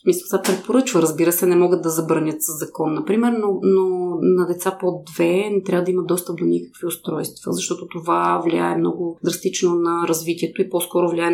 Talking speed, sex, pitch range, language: 185 wpm, female, 165-190 Hz, Bulgarian